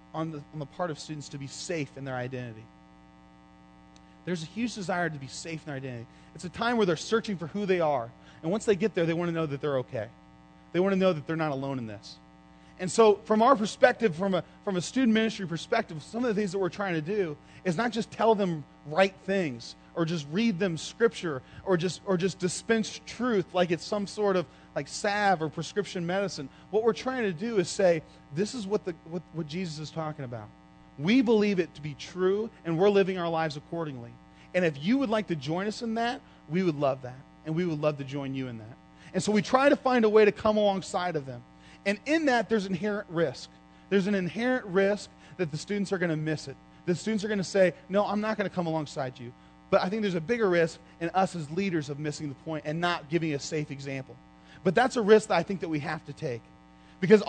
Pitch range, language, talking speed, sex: 150-210 Hz, English, 240 wpm, male